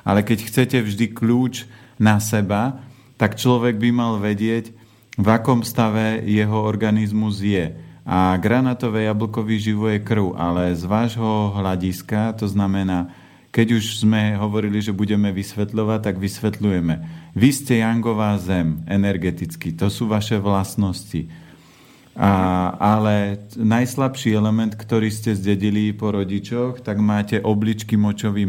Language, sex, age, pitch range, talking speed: Slovak, male, 40-59, 100-115 Hz, 130 wpm